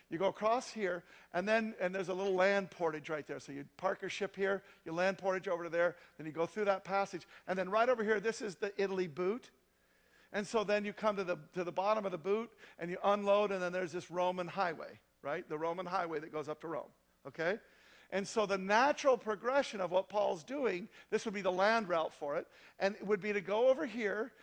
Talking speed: 245 wpm